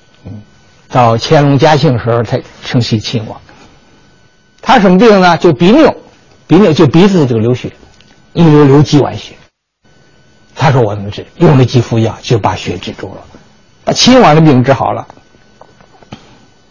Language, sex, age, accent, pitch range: Chinese, male, 60-79, native, 120-160 Hz